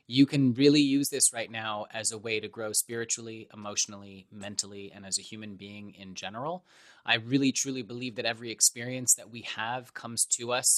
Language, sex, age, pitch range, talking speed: English, male, 20-39, 110-130 Hz, 195 wpm